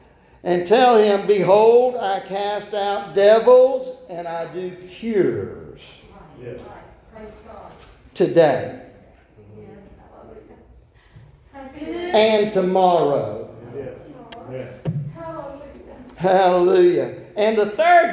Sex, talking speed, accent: male, 65 wpm, American